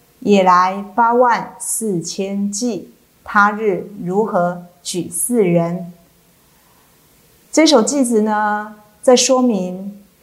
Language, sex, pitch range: Chinese, female, 185-235 Hz